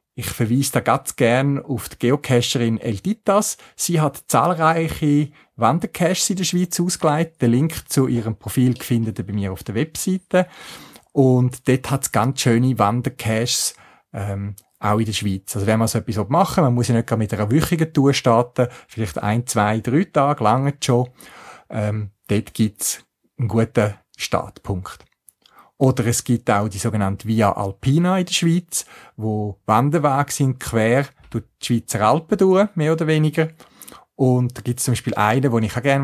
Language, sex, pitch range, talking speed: German, male, 110-140 Hz, 175 wpm